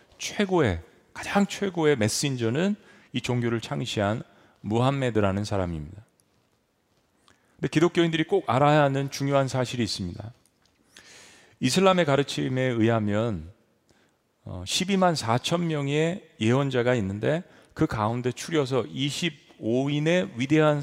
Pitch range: 105-155 Hz